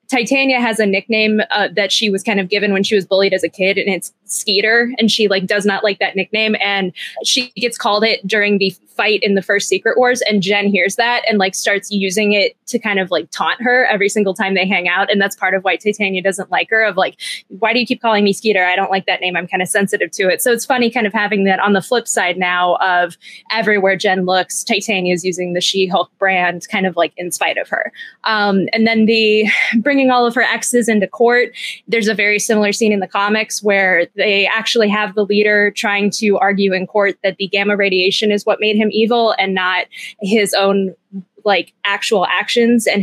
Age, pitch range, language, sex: 20-39, 195-220 Hz, English, female